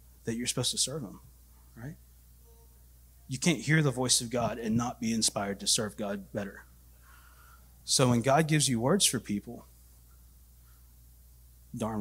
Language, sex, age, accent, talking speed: English, male, 30-49, American, 155 wpm